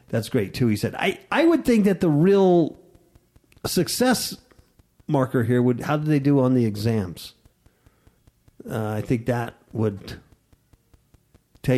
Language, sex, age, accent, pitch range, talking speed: English, male, 50-69, American, 125-175 Hz, 150 wpm